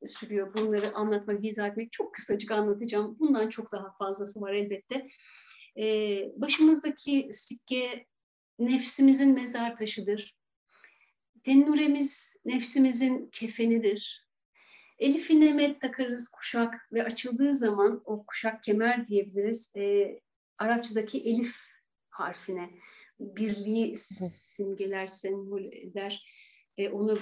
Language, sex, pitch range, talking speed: Turkish, female, 205-245 Hz, 95 wpm